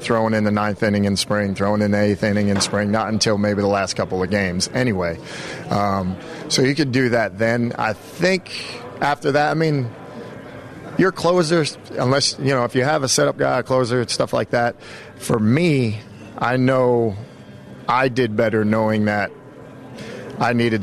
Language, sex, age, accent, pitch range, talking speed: English, male, 40-59, American, 105-115 Hz, 185 wpm